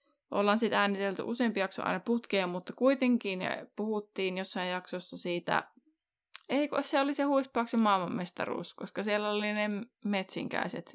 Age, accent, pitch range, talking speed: 20-39, native, 175-220 Hz, 130 wpm